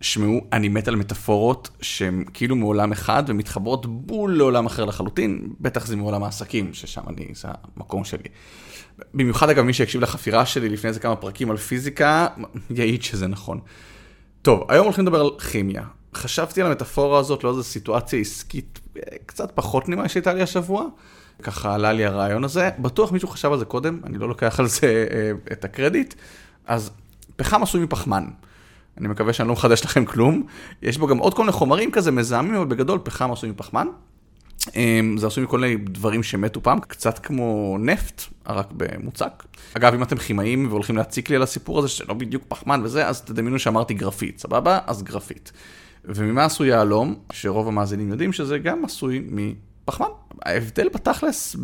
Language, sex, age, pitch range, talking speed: English, male, 30-49, 105-140 Hz, 145 wpm